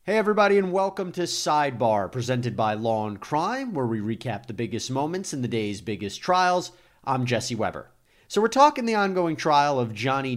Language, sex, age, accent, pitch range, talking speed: English, male, 30-49, American, 110-145 Hz, 185 wpm